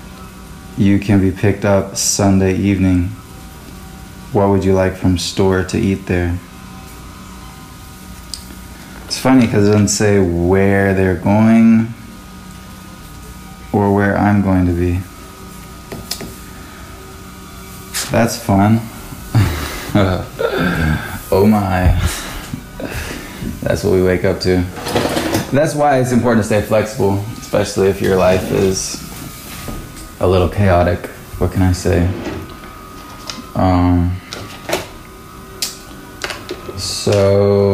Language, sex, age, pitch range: English, male, 20-39, 90-105 Hz